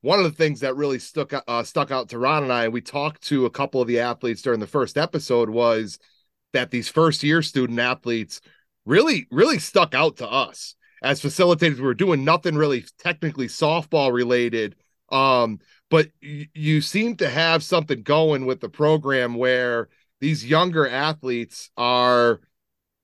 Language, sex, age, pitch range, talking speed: English, male, 30-49, 125-165 Hz, 170 wpm